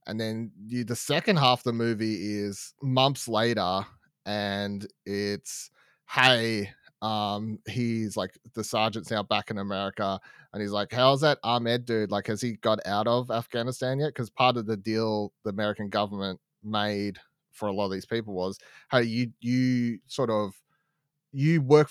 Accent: Australian